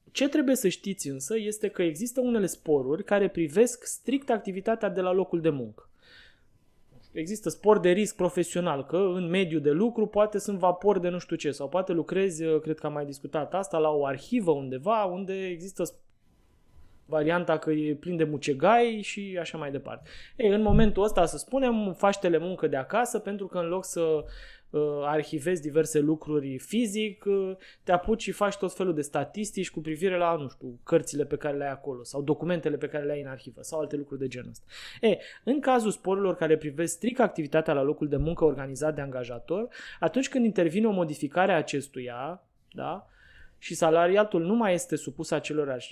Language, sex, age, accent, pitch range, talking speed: Romanian, male, 20-39, native, 150-200 Hz, 190 wpm